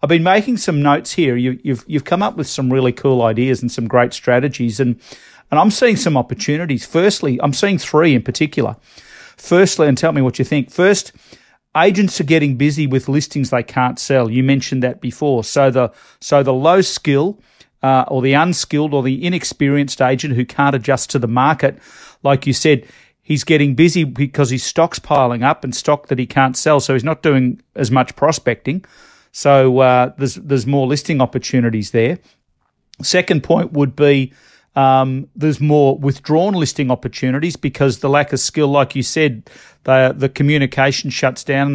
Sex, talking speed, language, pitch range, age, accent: male, 185 wpm, English, 130-150 Hz, 40-59, Australian